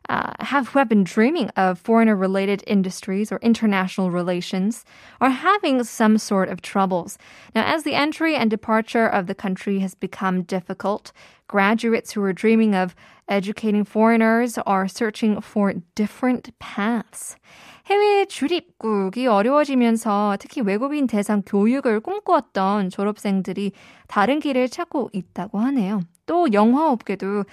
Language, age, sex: Korean, 20-39, female